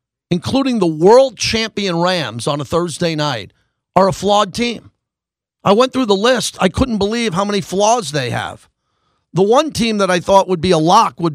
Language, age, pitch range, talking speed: English, 40-59, 155-200 Hz, 195 wpm